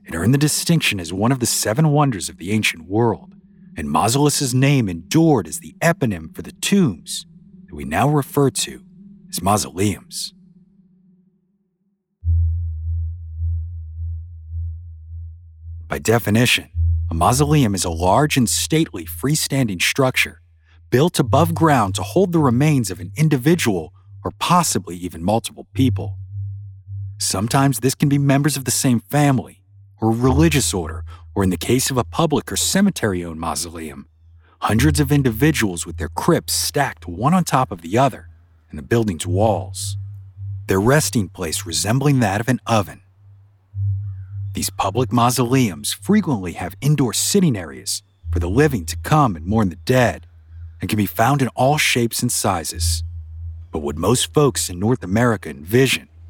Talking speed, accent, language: 145 wpm, American, English